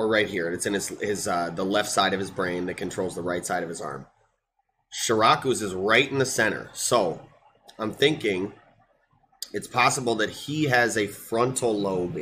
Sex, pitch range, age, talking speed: male, 100-125 Hz, 30-49, 190 wpm